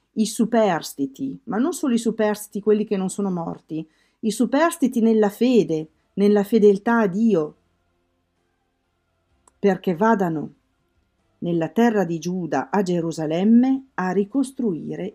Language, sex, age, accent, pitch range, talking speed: Italian, female, 50-69, native, 150-245 Hz, 120 wpm